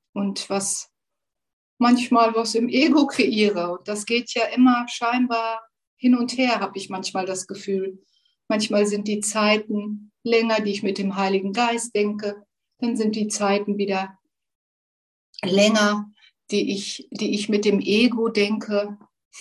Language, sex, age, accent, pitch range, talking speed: German, female, 60-79, German, 195-230 Hz, 145 wpm